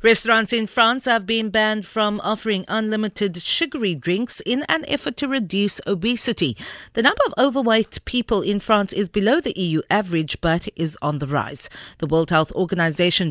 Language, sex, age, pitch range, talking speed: English, female, 50-69, 175-230 Hz, 170 wpm